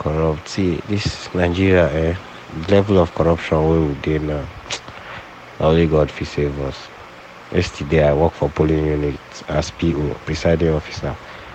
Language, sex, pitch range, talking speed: English, male, 70-80 Hz, 140 wpm